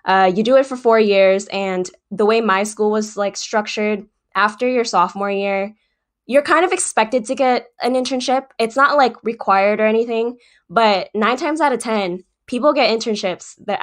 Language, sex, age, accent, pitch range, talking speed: English, female, 10-29, American, 190-220 Hz, 185 wpm